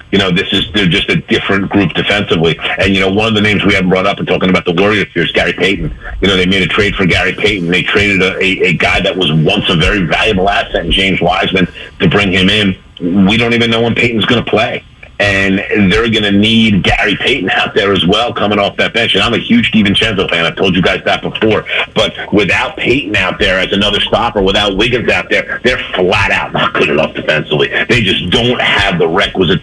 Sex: male